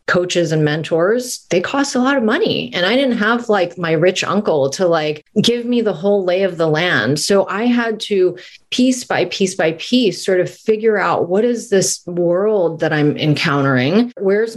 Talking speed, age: 200 wpm, 30-49